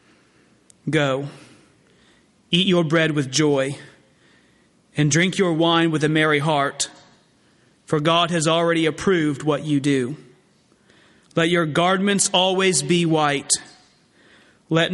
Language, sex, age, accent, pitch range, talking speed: English, male, 40-59, American, 140-165 Hz, 115 wpm